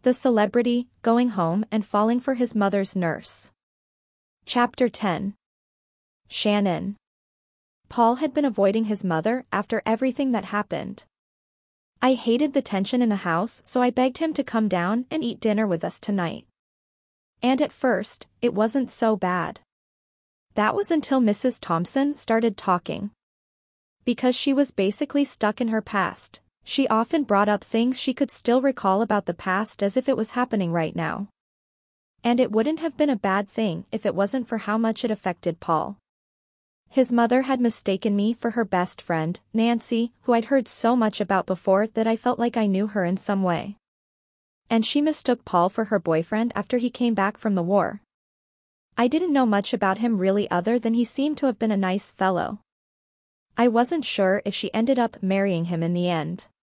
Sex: female